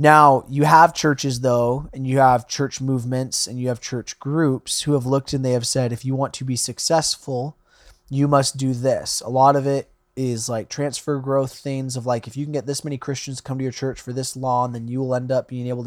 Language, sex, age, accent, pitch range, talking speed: English, male, 20-39, American, 130-150 Hz, 245 wpm